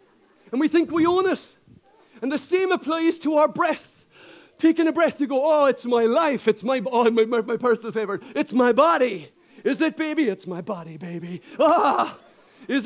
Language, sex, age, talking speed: English, male, 40-59, 195 wpm